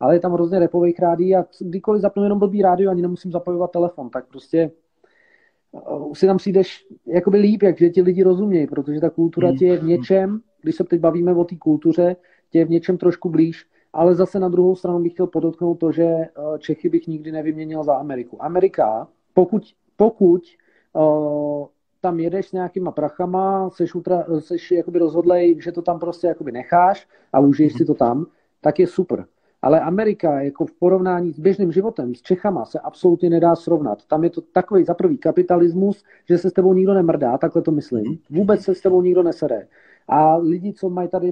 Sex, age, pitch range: male, 40-59, 160-185 Hz